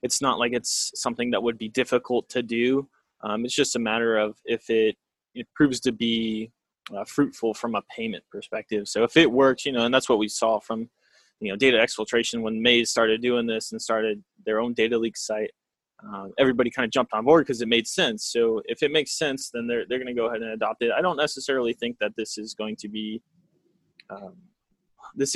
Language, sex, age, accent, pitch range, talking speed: English, male, 20-39, American, 110-130 Hz, 225 wpm